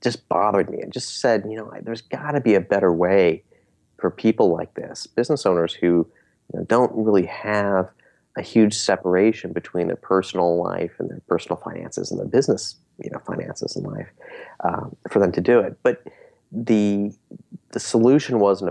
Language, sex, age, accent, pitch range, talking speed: English, male, 30-49, American, 90-120 Hz, 185 wpm